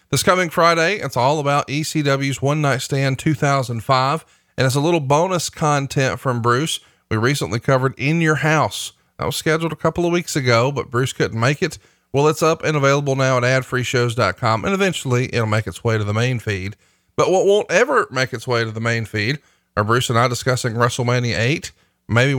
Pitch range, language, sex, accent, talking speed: 120-150 Hz, English, male, American, 200 wpm